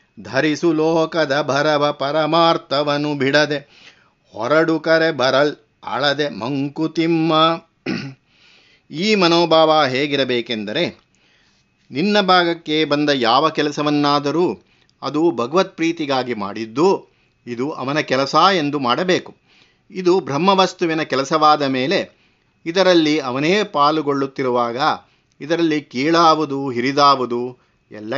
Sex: male